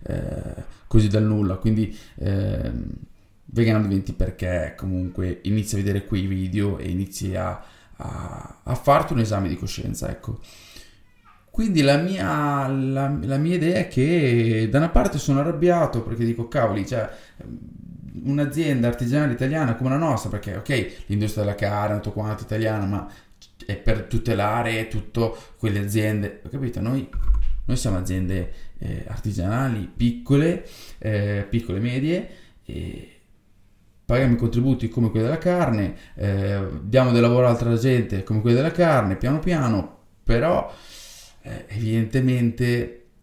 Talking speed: 140 wpm